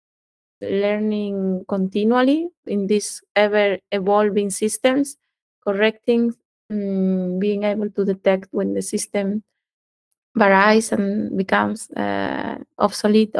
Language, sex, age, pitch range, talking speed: English, female, 20-39, 200-235 Hz, 95 wpm